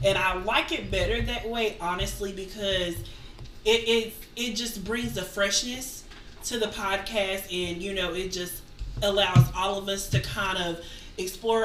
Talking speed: 165 wpm